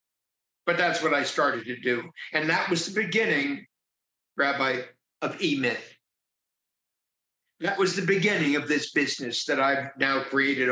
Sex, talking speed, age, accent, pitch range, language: male, 145 wpm, 60-79, American, 140-175 Hz, English